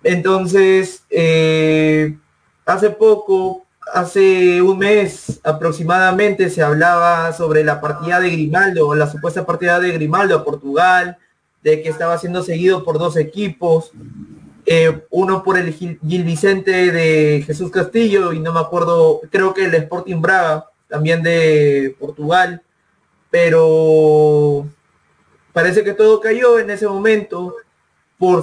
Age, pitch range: 30-49, 155-185 Hz